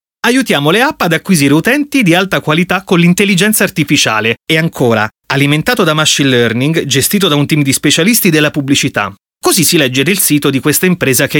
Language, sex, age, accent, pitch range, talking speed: Italian, male, 30-49, native, 125-175 Hz, 185 wpm